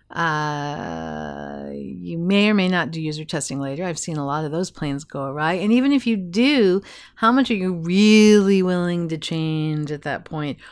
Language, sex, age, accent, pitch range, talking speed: English, female, 50-69, American, 150-220 Hz, 195 wpm